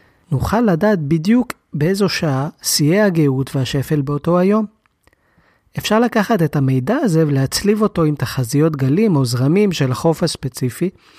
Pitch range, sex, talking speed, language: 145-200 Hz, male, 135 wpm, Hebrew